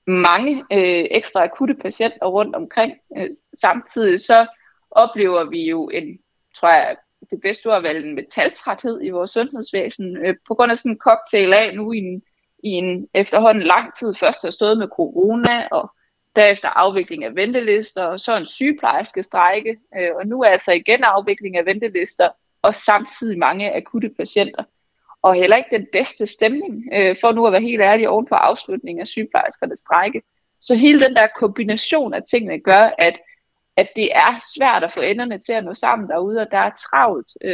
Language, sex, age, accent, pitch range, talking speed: Danish, female, 20-39, native, 190-240 Hz, 180 wpm